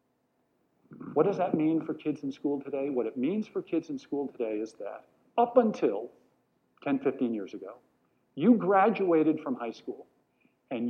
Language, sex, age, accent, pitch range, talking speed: English, male, 50-69, American, 115-160 Hz, 170 wpm